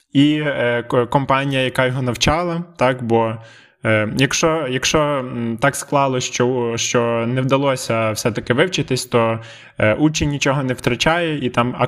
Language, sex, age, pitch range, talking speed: Ukrainian, male, 20-39, 120-145 Hz, 125 wpm